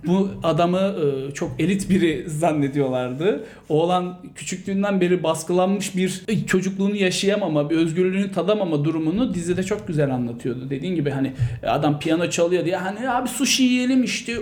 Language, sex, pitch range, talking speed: Turkish, male, 155-220 Hz, 135 wpm